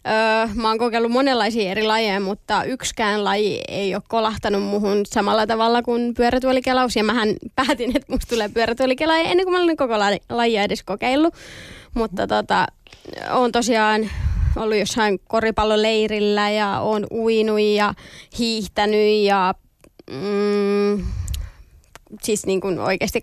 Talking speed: 130 wpm